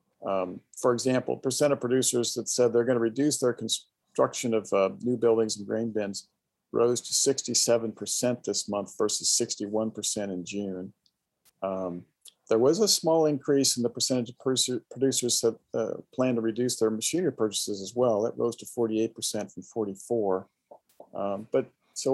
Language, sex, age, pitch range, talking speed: English, male, 50-69, 110-130 Hz, 165 wpm